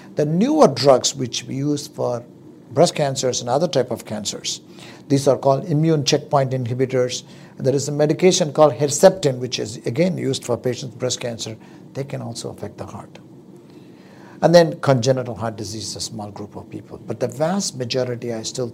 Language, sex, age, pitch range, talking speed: English, male, 60-79, 120-165 Hz, 185 wpm